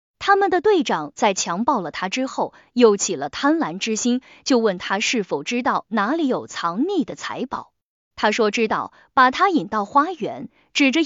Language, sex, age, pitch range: Chinese, female, 20-39, 215-300 Hz